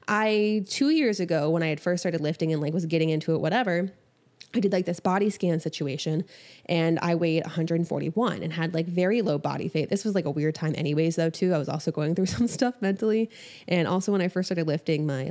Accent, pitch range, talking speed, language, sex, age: American, 160-190 Hz, 235 wpm, English, female, 20-39